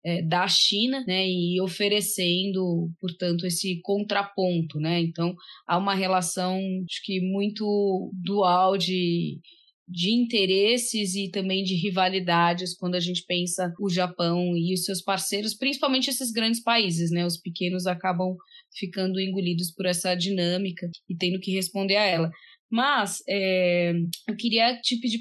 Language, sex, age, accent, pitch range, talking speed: Portuguese, female, 20-39, Brazilian, 180-225 Hz, 135 wpm